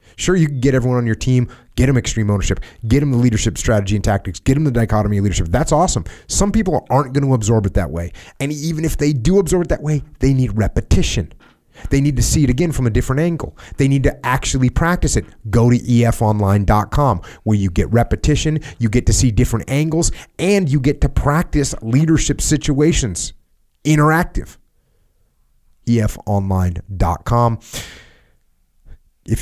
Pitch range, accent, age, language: 95-130 Hz, American, 30-49, English